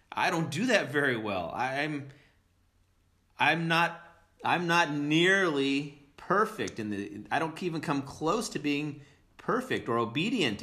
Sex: male